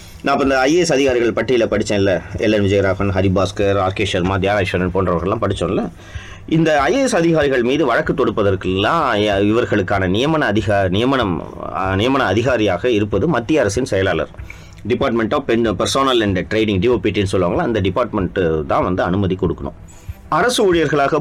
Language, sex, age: Tamil, male, 30-49